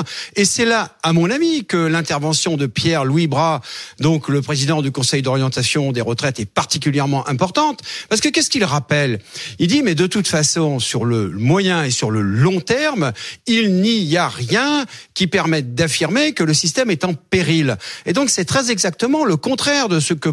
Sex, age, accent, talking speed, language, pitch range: male, 50-69, French, 190 wpm, French, 130-190 Hz